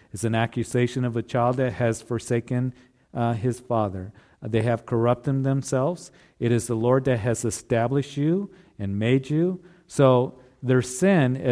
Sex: male